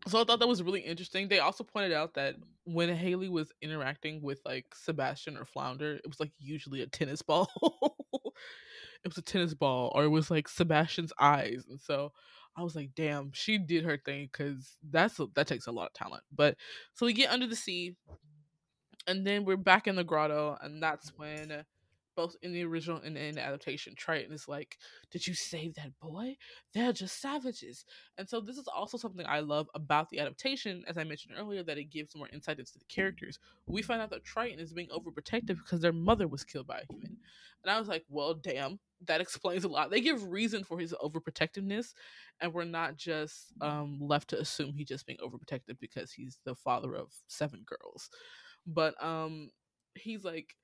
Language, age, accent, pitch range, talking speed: English, 20-39, American, 150-195 Hz, 200 wpm